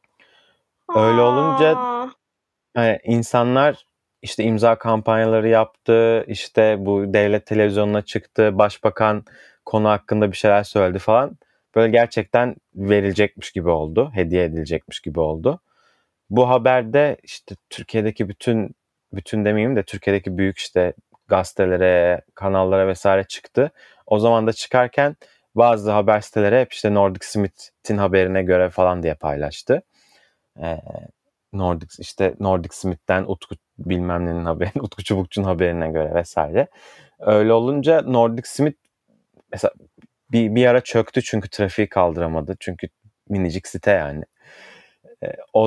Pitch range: 95-115 Hz